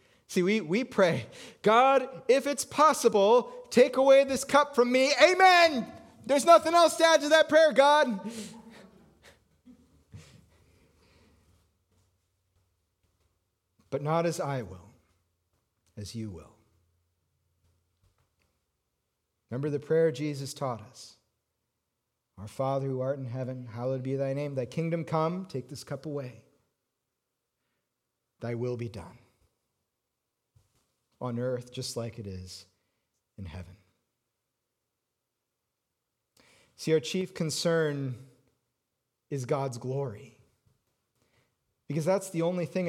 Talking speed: 110 wpm